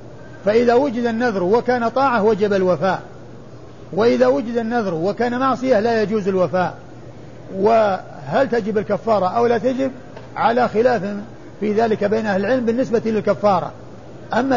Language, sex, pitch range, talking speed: Arabic, male, 195-240 Hz, 130 wpm